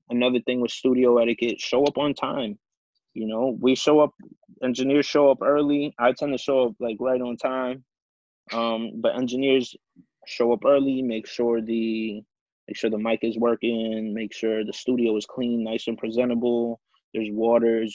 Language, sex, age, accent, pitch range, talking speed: English, male, 20-39, American, 115-130 Hz, 175 wpm